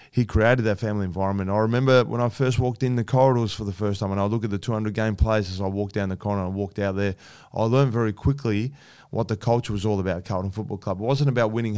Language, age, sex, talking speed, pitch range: English, 20-39, male, 280 wpm, 100-120 Hz